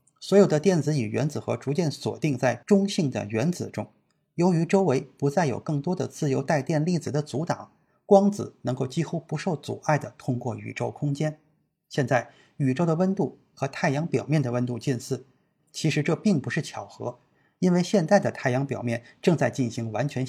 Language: Chinese